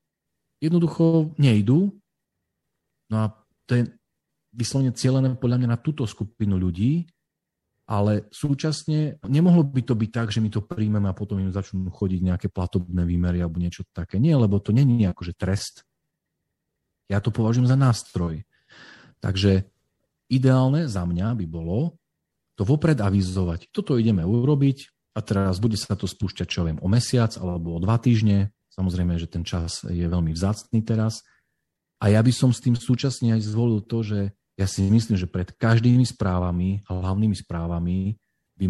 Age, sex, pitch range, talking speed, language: 40-59, male, 95-120 Hz, 155 wpm, Slovak